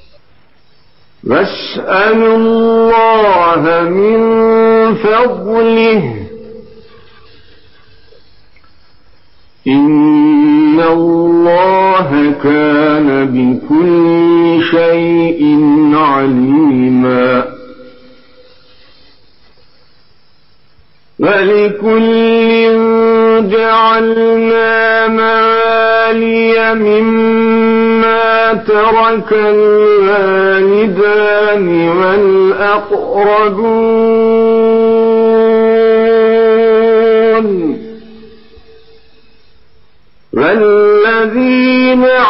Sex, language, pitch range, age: male, Turkish, 155-225 Hz, 50-69